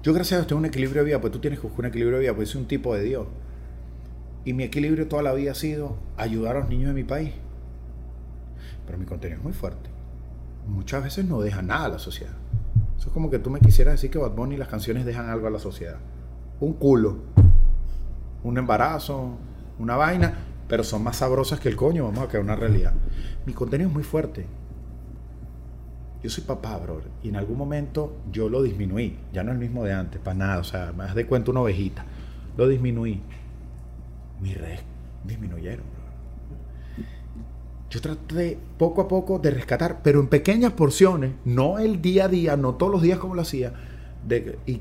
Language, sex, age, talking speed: Spanish, male, 30-49, 205 wpm